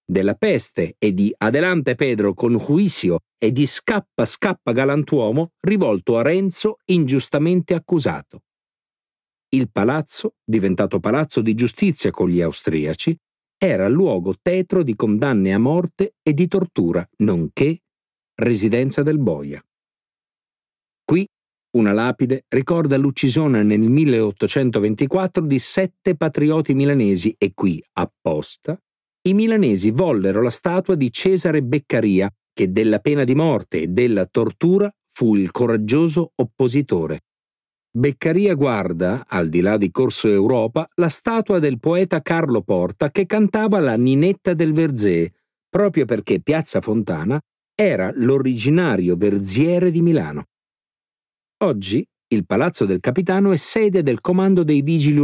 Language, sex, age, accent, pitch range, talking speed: Italian, male, 50-69, native, 110-175 Hz, 125 wpm